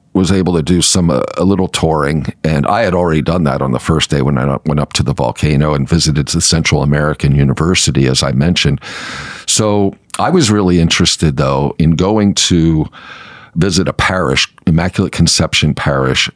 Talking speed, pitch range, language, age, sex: 180 wpm, 75-95 Hz, English, 50-69, male